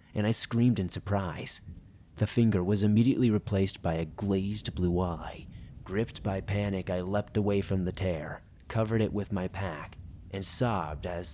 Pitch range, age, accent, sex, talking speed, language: 90-110 Hz, 30-49, American, male, 170 wpm, English